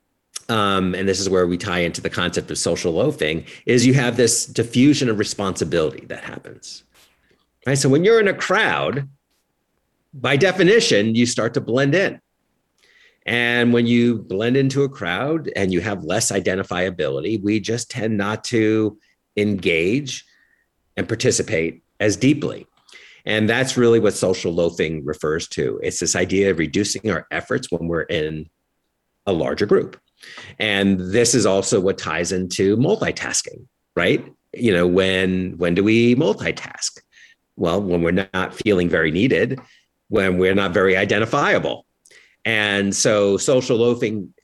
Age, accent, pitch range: 50-69, American, 95-120 Hz